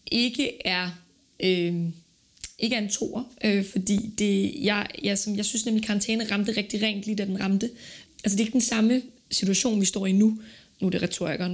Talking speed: 205 wpm